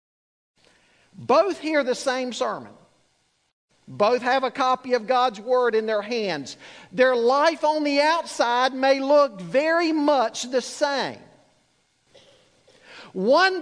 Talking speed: 120 wpm